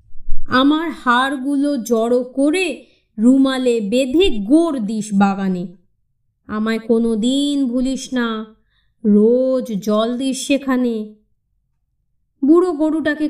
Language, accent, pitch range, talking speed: Bengali, native, 200-275 Hz, 90 wpm